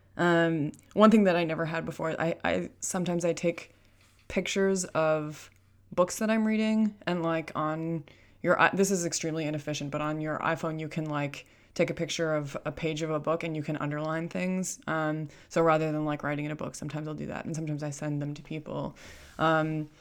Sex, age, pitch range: female, 20-39, 155-190 Hz